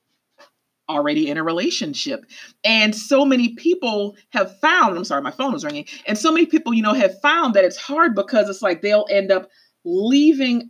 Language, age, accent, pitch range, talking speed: English, 40-59, American, 190-290 Hz, 190 wpm